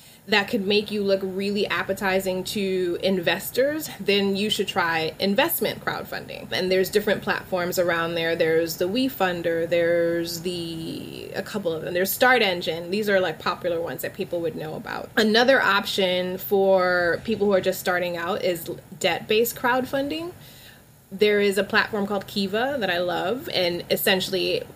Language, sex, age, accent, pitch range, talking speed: English, female, 20-39, American, 170-200 Hz, 160 wpm